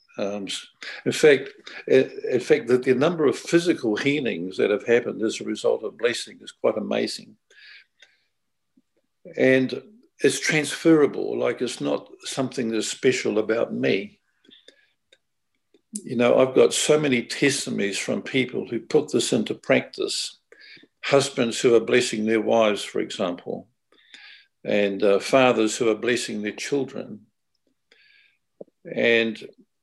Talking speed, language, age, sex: 125 wpm, English, 60-79, male